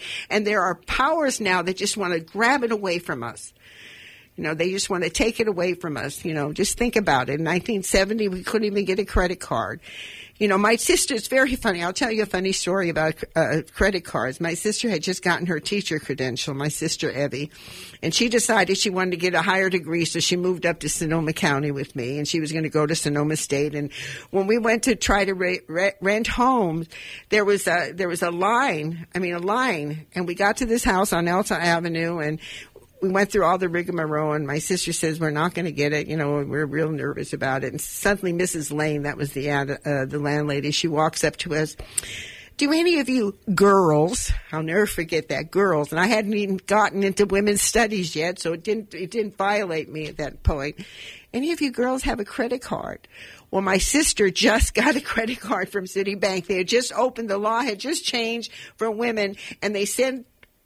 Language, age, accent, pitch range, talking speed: English, 60-79, American, 155-210 Hz, 225 wpm